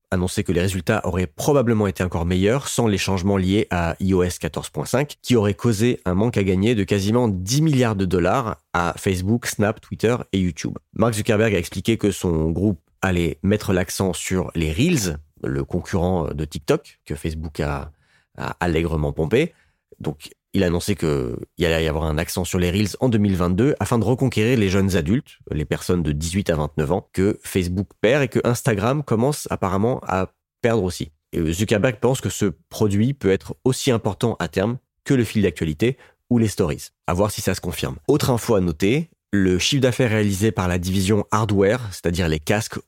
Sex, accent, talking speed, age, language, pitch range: male, French, 190 wpm, 30-49, French, 85-110 Hz